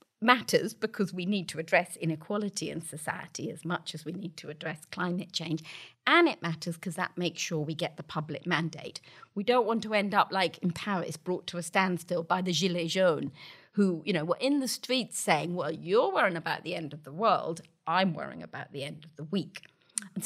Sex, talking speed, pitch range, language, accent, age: female, 215 wpm, 170-220 Hz, English, British, 40-59